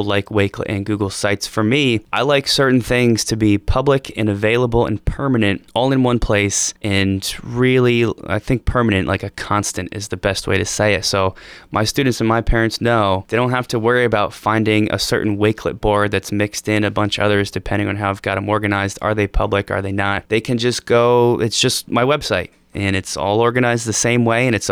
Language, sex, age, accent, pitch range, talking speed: English, male, 20-39, American, 100-115 Hz, 225 wpm